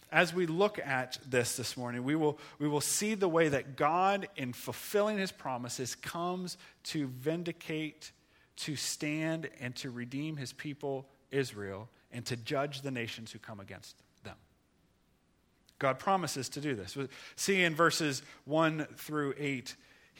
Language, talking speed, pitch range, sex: English, 150 wpm, 130-175 Hz, male